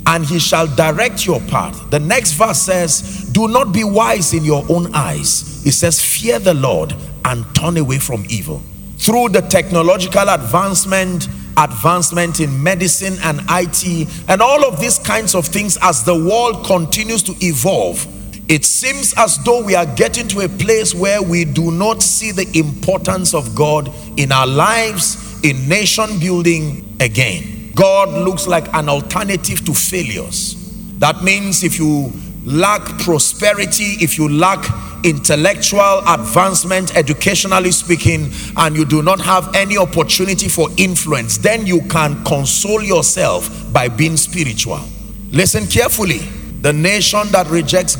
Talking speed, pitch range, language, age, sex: 150 wpm, 150-195 Hz, English, 40-59, male